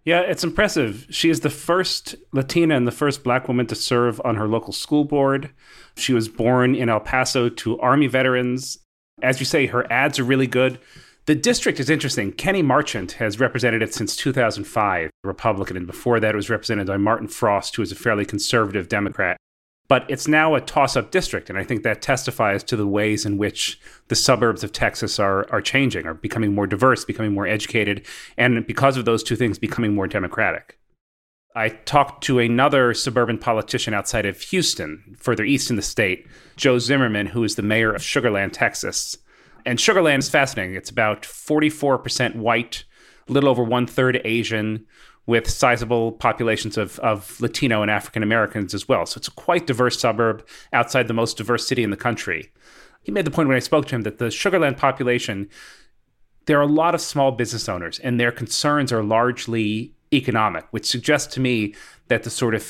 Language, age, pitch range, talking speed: English, 30-49, 105-135 Hz, 190 wpm